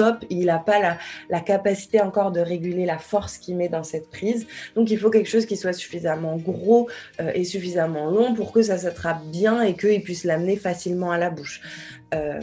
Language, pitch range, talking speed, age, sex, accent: French, 170-205 Hz, 210 wpm, 20-39, female, French